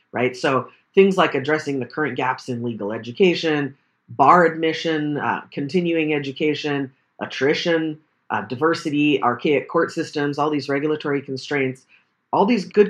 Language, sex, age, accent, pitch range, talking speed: English, female, 40-59, American, 130-160 Hz, 135 wpm